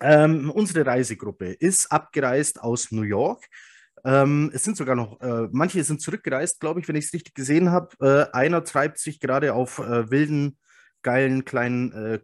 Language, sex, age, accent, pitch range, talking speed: German, male, 30-49, German, 110-145 Hz, 175 wpm